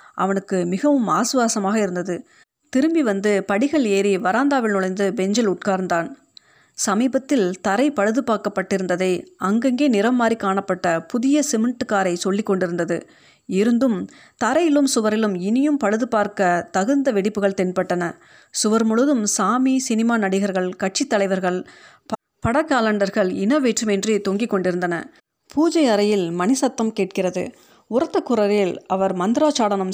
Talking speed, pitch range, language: 105 wpm, 185-240 Hz, Tamil